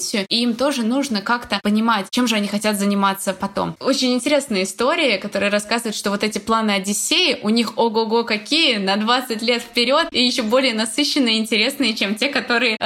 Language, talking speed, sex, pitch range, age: Russian, 180 wpm, female, 205-250 Hz, 20-39